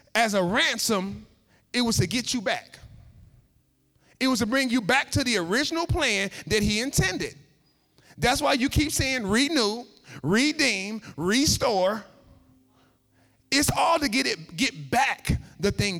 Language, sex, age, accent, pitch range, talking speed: English, male, 30-49, American, 190-275 Hz, 145 wpm